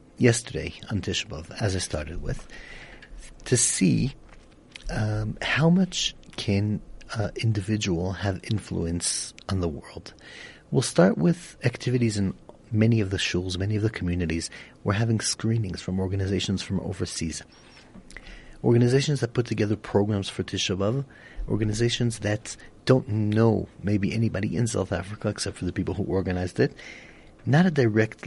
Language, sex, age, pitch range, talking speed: English, male, 40-59, 90-115 Hz, 145 wpm